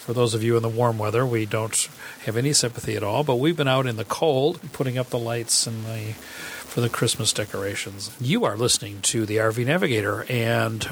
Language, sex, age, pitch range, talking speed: English, male, 40-59, 110-140 Hz, 220 wpm